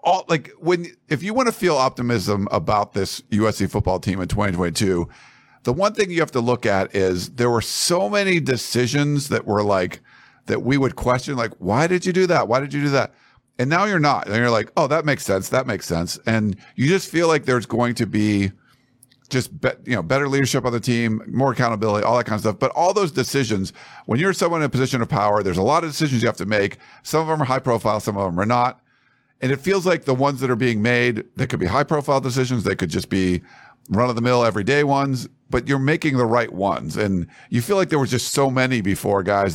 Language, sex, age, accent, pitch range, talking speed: English, male, 50-69, American, 110-150 Hz, 245 wpm